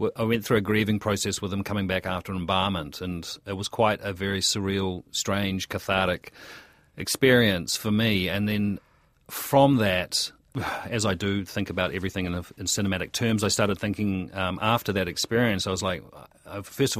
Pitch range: 95-115 Hz